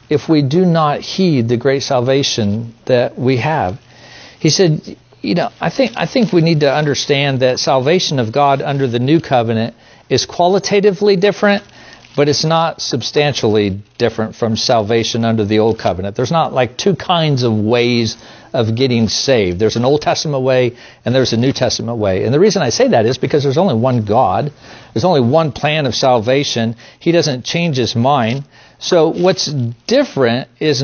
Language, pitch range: English, 120-160 Hz